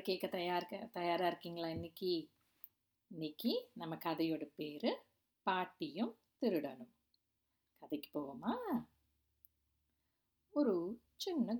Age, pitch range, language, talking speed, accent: 50-69, 165-230 Hz, Tamil, 80 wpm, native